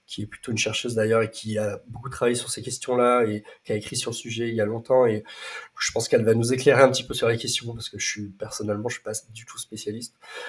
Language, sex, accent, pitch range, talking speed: French, male, French, 110-130 Hz, 285 wpm